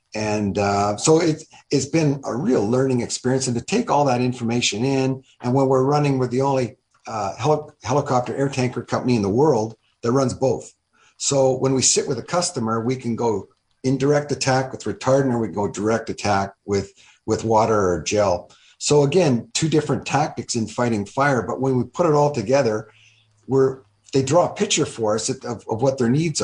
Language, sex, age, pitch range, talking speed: English, male, 50-69, 110-135 Hz, 200 wpm